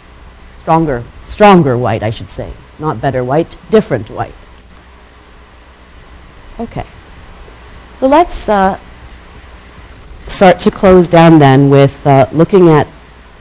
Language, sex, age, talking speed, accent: English, female, 40-59, 105 wpm, American